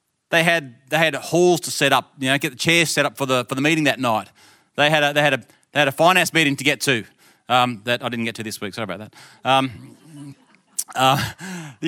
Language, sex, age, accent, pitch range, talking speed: English, male, 30-49, Australian, 140-185 Hz, 255 wpm